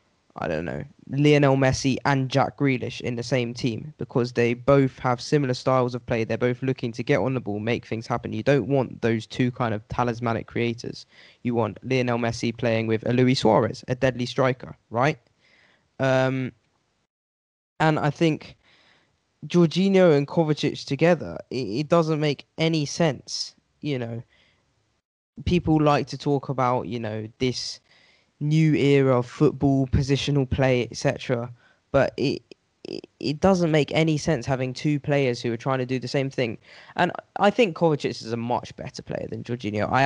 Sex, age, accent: male, 10-29, British